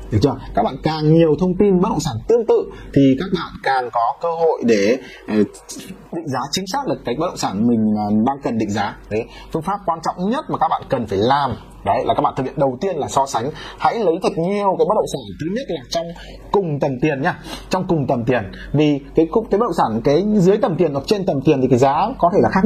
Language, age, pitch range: Vietnamese, 20-39, 135-200 Hz